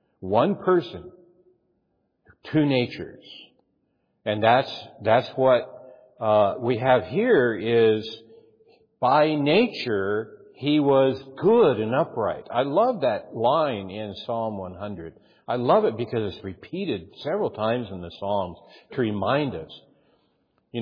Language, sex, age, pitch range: English, male, 60-79, 120-170 Hz